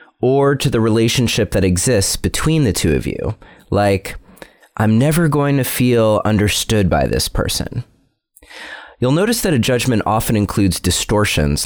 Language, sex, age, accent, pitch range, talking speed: English, male, 30-49, American, 90-130 Hz, 150 wpm